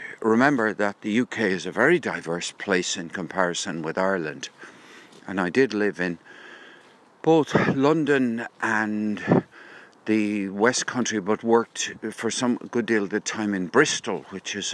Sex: male